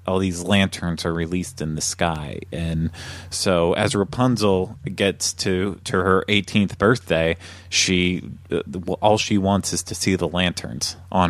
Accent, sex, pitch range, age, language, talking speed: American, male, 85-95 Hz, 30-49, English, 150 wpm